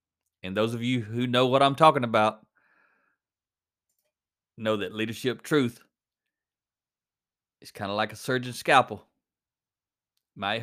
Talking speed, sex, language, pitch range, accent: 125 wpm, male, English, 110-145 Hz, American